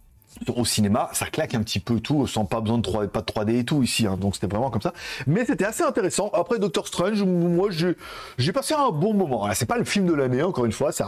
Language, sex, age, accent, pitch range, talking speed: French, male, 40-59, French, 130-190 Hz, 270 wpm